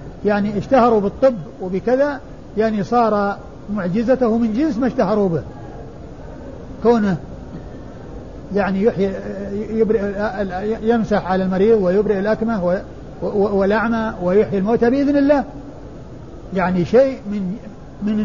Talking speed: 100 wpm